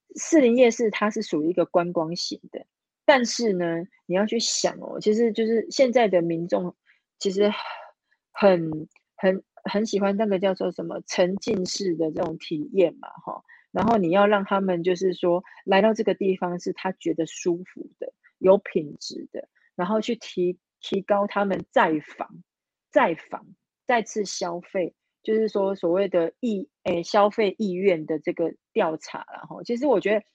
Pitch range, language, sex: 175-220 Hz, Chinese, female